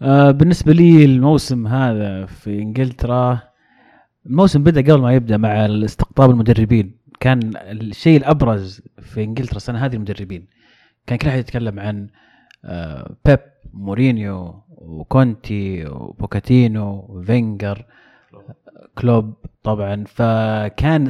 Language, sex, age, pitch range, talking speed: Arabic, male, 30-49, 105-130 Hz, 95 wpm